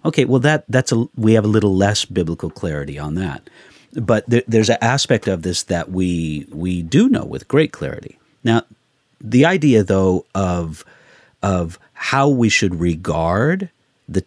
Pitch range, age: 90-130 Hz, 50-69